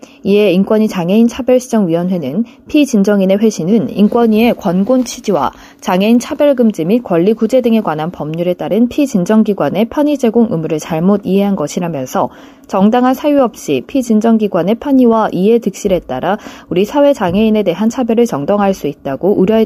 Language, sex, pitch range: Korean, female, 185-245 Hz